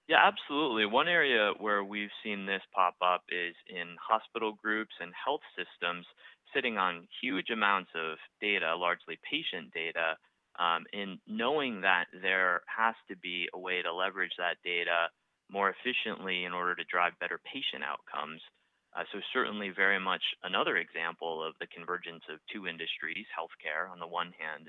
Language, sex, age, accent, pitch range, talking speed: English, male, 30-49, American, 85-105 Hz, 165 wpm